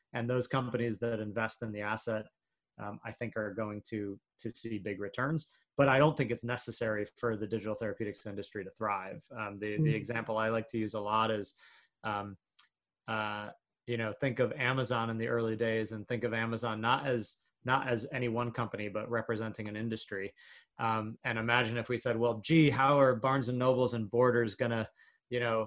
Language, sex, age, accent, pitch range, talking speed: English, male, 30-49, American, 110-120 Hz, 200 wpm